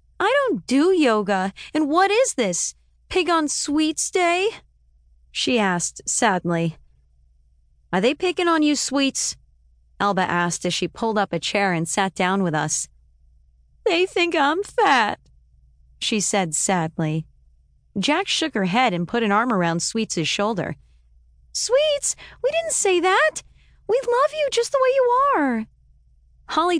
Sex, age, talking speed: female, 30-49, 150 wpm